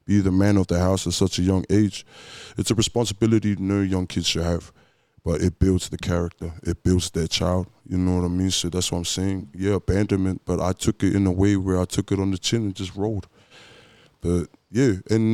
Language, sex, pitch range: English, male, 90-105 Hz